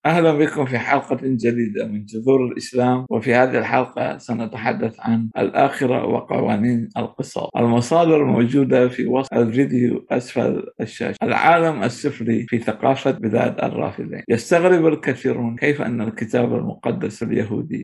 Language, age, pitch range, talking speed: Arabic, 50-69, 120-135 Hz, 120 wpm